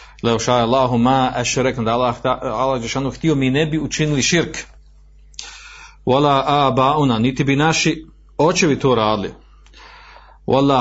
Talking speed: 135 wpm